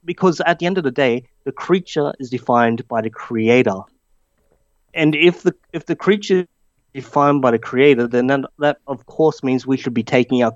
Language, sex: English, male